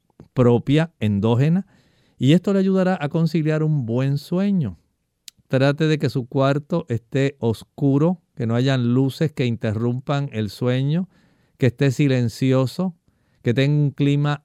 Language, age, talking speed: Spanish, 50-69, 135 wpm